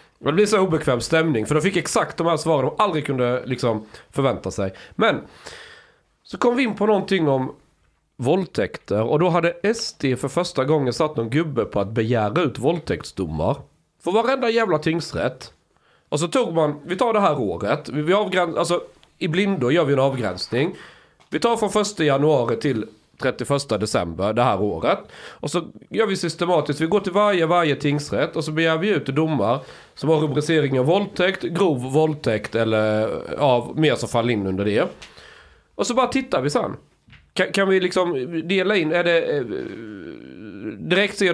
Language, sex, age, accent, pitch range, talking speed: Swedish, male, 30-49, native, 125-180 Hz, 180 wpm